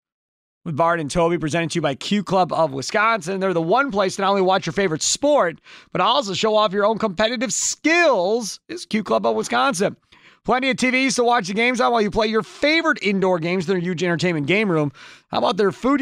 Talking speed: 220 wpm